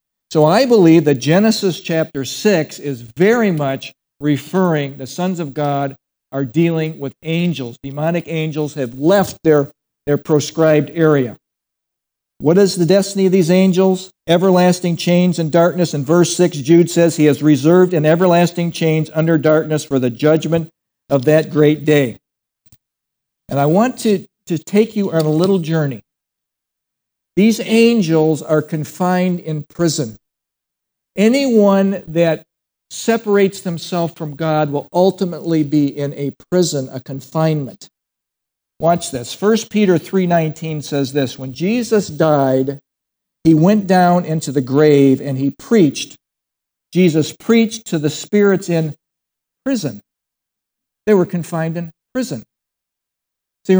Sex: male